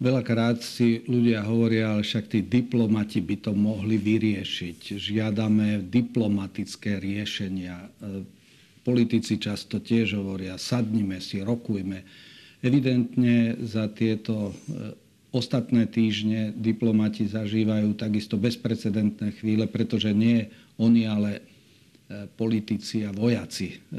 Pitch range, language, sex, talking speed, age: 105-115 Hz, Slovak, male, 100 wpm, 50-69